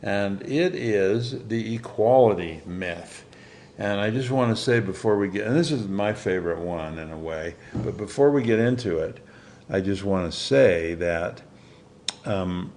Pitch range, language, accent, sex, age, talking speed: 90-125 Hz, English, American, male, 60-79, 175 wpm